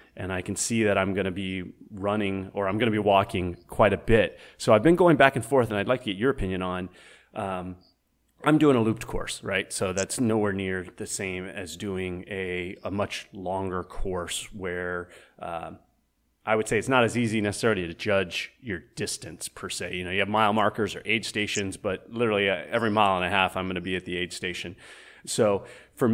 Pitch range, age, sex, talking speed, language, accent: 95-115 Hz, 30-49, male, 220 wpm, English, American